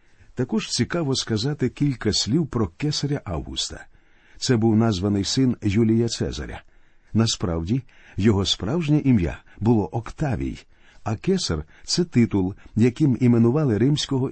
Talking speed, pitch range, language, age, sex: 115 wpm, 105-140 Hz, Ukrainian, 50-69, male